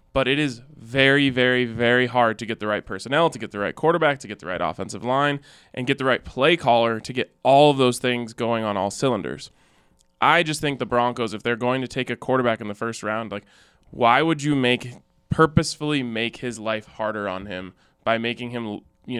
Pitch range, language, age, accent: 110-135 Hz, English, 20-39, American